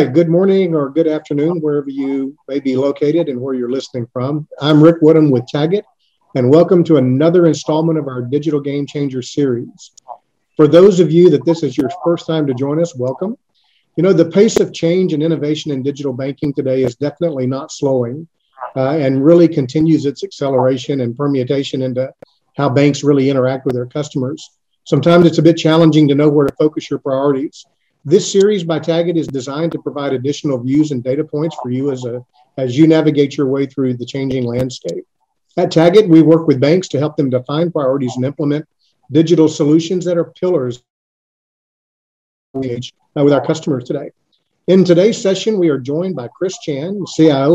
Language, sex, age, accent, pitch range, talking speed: English, male, 50-69, American, 135-165 Hz, 185 wpm